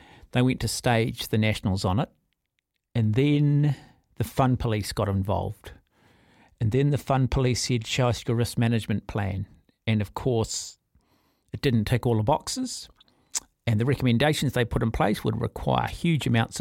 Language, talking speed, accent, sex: English, 170 wpm, Australian, male